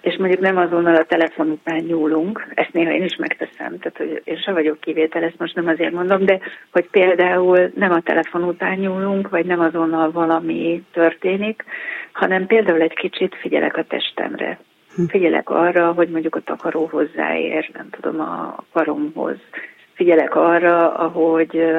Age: 30-49